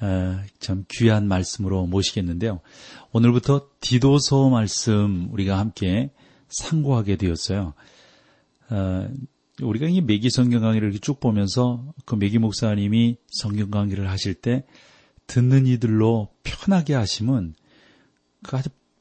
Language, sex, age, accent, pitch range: Korean, male, 40-59, native, 95-125 Hz